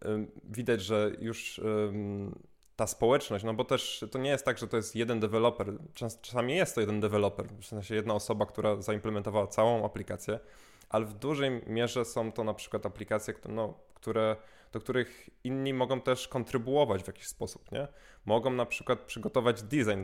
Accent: native